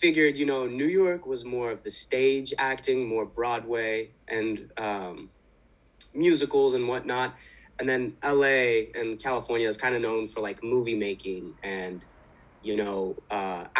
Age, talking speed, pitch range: 20-39, 150 wpm, 110-140 Hz